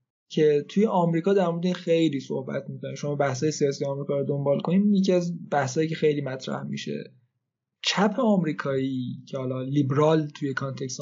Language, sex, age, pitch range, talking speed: Persian, male, 20-39, 145-185 Hz, 160 wpm